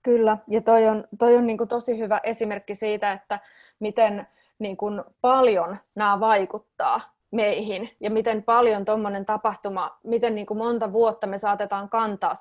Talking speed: 125 wpm